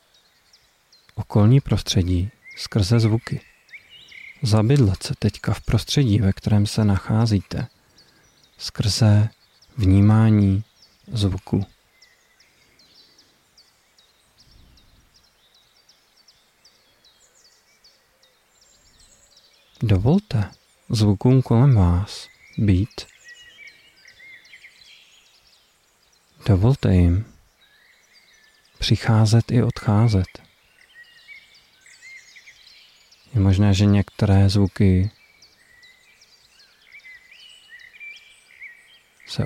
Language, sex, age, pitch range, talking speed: Czech, male, 40-59, 100-125 Hz, 50 wpm